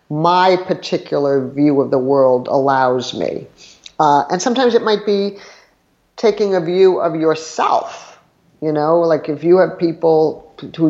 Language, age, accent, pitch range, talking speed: English, 50-69, American, 150-205 Hz, 150 wpm